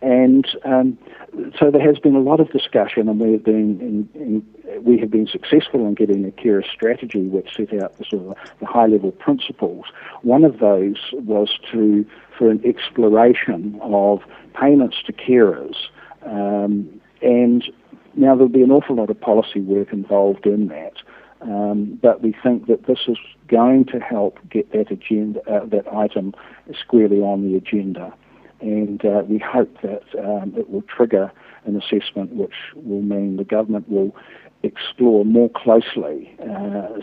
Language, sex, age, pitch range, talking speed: English, male, 60-79, 100-120 Hz, 165 wpm